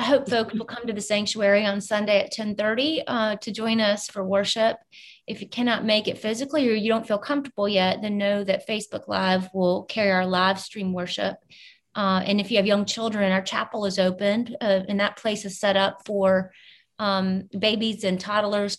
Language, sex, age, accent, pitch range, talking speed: English, female, 30-49, American, 195-225 Hz, 205 wpm